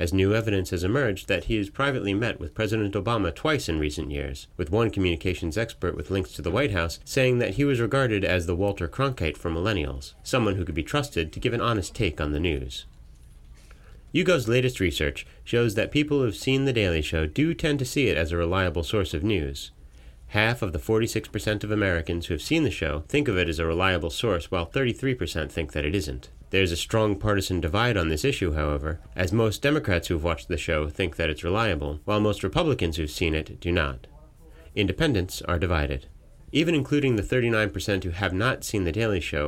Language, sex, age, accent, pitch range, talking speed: English, male, 30-49, American, 80-110 Hz, 215 wpm